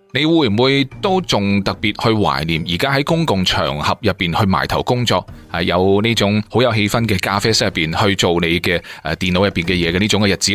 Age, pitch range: 20-39, 95-135 Hz